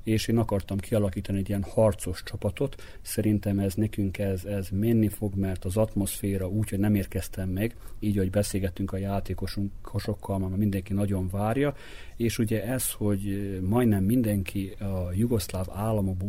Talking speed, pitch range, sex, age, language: 150 wpm, 95-105 Hz, male, 40-59, Hungarian